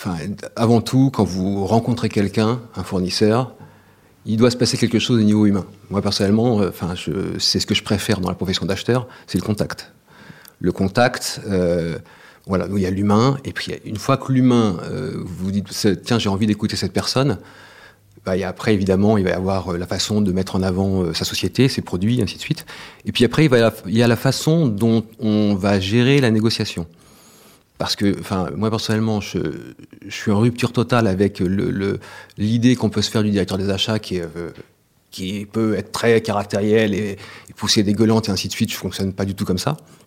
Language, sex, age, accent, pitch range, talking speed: French, male, 40-59, French, 95-115 Hz, 215 wpm